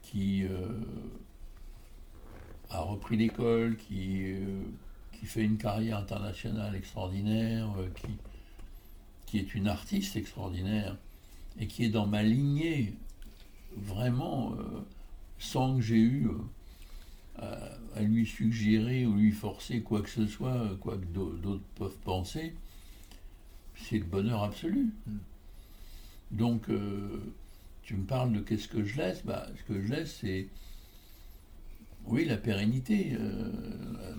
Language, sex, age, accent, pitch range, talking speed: French, male, 60-79, French, 95-115 Hz, 125 wpm